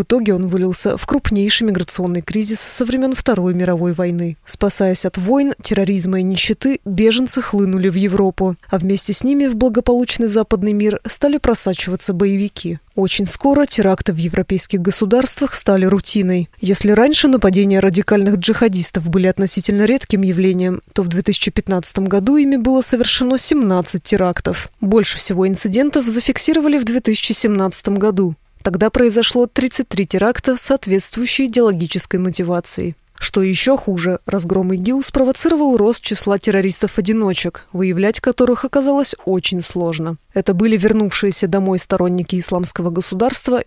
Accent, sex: native, female